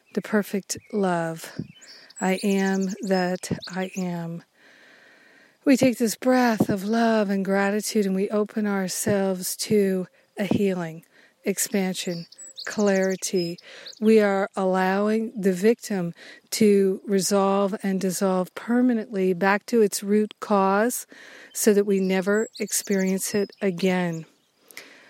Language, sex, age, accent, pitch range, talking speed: English, female, 50-69, American, 190-215 Hz, 110 wpm